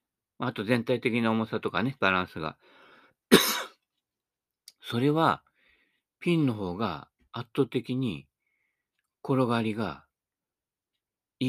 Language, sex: Japanese, male